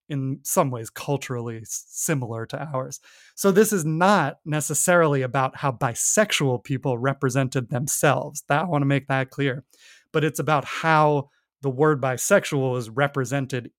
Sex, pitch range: male, 130-155 Hz